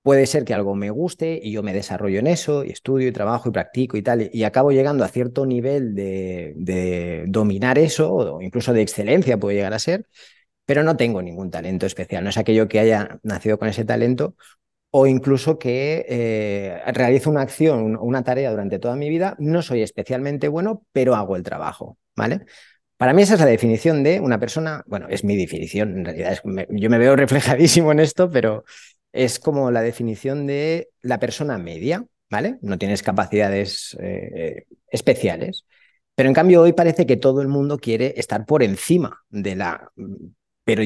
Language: Spanish